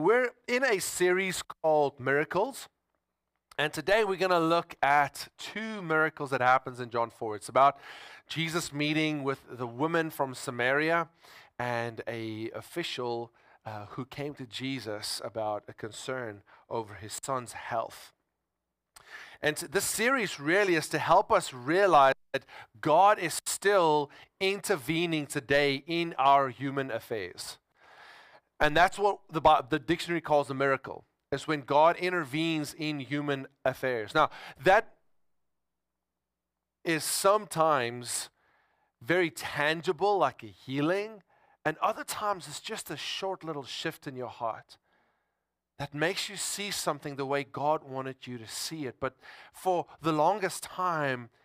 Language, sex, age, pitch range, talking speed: English, male, 30-49, 130-170 Hz, 140 wpm